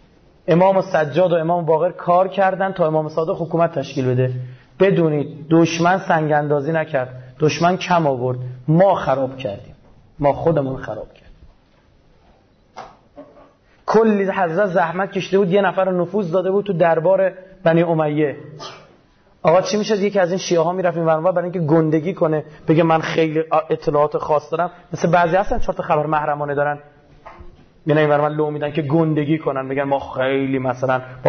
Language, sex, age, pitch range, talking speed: Persian, male, 30-49, 135-185 Hz, 155 wpm